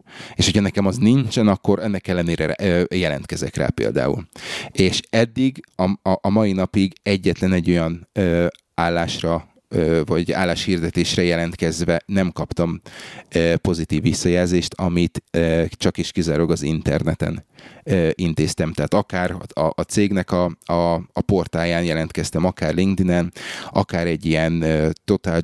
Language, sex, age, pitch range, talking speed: Hungarian, male, 30-49, 85-100 Hz, 115 wpm